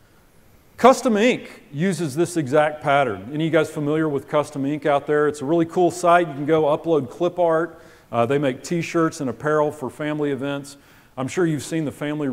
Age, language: 40-59, English